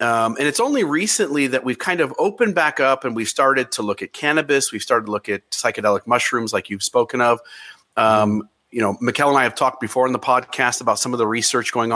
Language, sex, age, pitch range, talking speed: English, male, 40-59, 120-155 Hz, 240 wpm